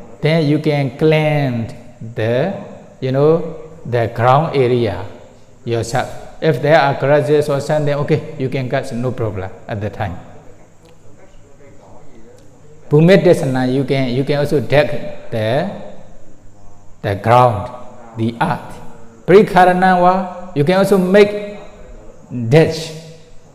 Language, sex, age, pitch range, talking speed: English, male, 60-79, 110-145 Hz, 110 wpm